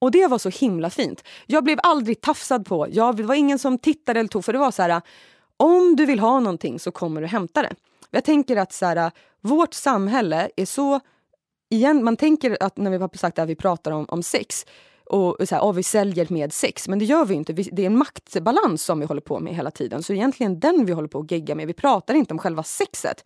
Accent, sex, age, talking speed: Swedish, female, 20-39, 250 wpm